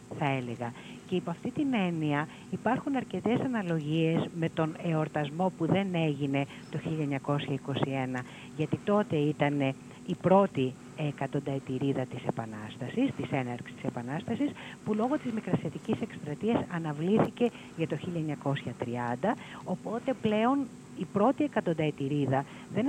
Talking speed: 120 wpm